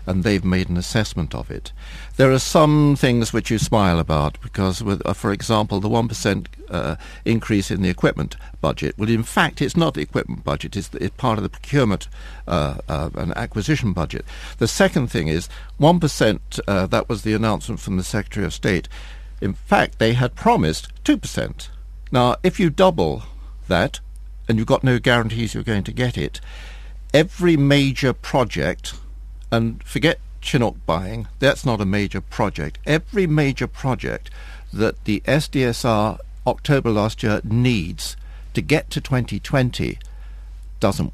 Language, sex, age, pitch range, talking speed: English, male, 60-79, 90-135 Hz, 160 wpm